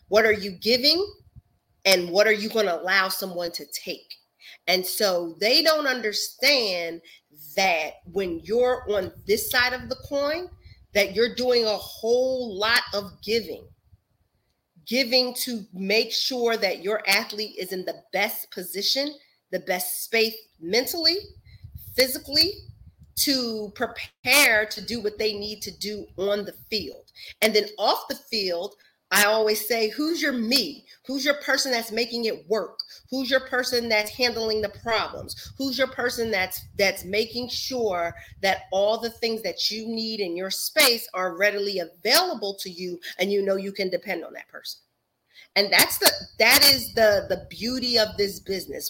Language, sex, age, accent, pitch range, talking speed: English, female, 40-59, American, 195-245 Hz, 160 wpm